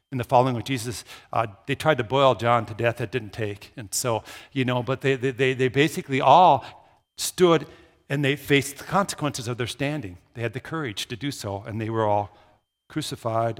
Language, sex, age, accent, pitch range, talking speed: English, male, 50-69, American, 110-145 Hz, 210 wpm